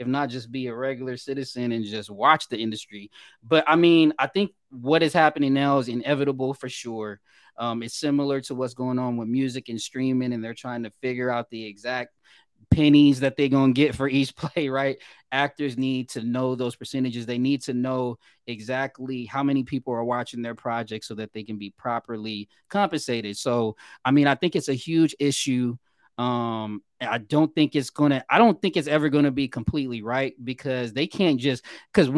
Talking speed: 200 wpm